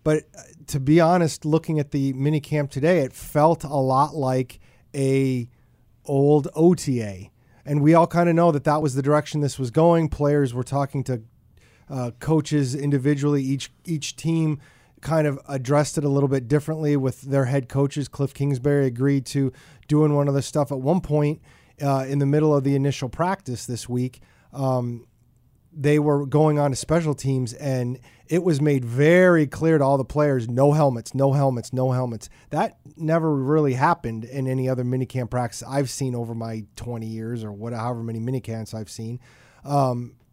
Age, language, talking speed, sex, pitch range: 30-49, English, 180 wpm, male, 125-150 Hz